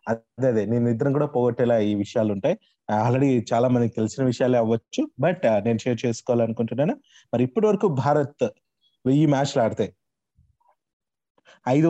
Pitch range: 120-155 Hz